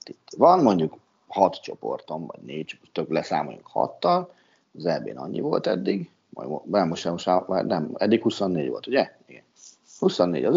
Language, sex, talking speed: Hungarian, male, 135 wpm